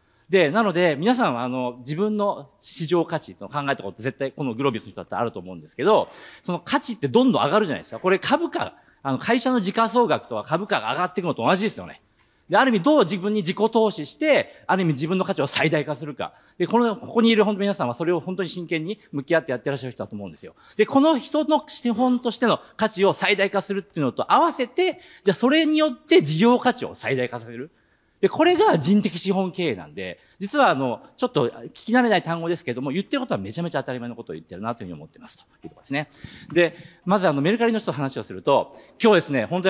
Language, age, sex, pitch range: Japanese, 40-59, male, 140-235 Hz